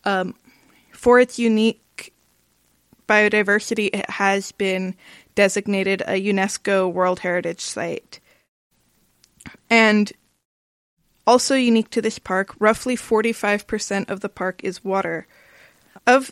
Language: English